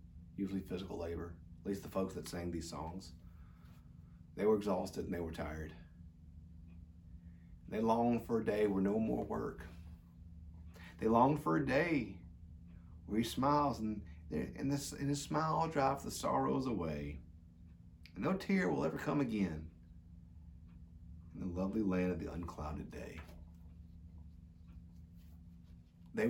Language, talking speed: English, 130 wpm